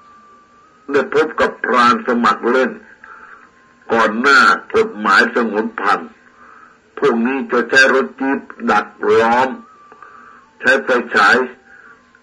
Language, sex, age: Thai, male, 60-79